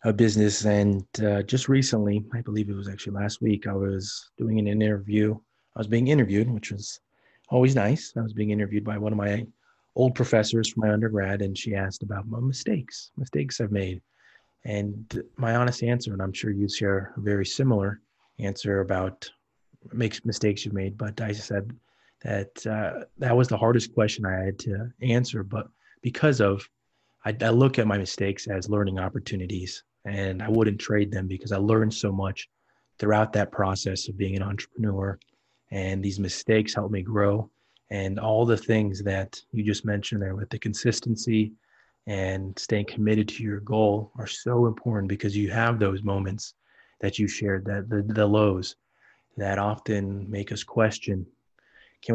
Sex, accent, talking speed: male, American, 175 wpm